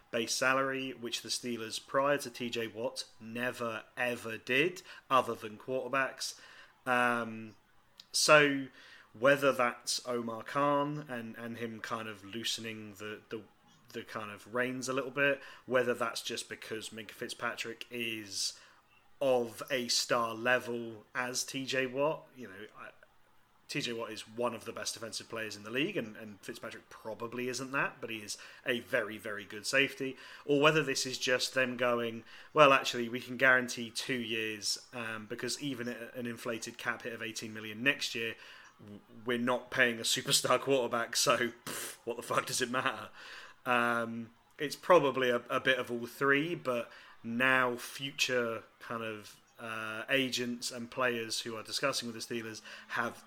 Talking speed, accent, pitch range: 160 wpm, British, 110-130 Hz